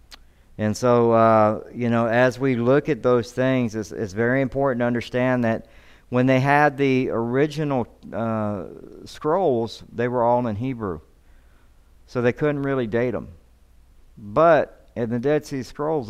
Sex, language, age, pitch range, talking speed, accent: male, English, 50-69, 95-125 Hz, 155 wpm, American